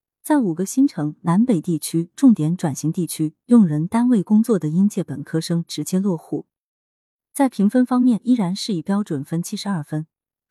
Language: Chinese